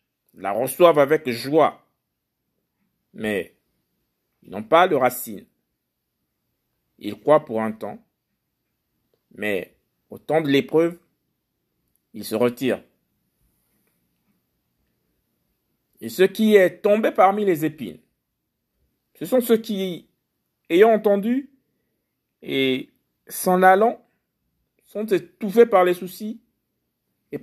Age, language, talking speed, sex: 50-69, French, 100 wpm, male